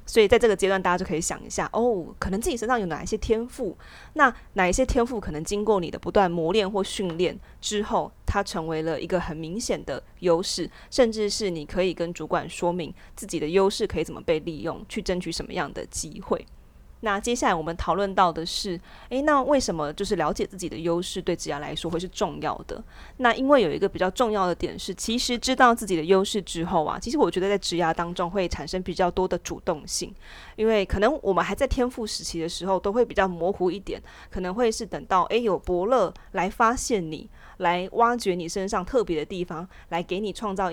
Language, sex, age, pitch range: Chinese, female, 20-39, 175-215 Hz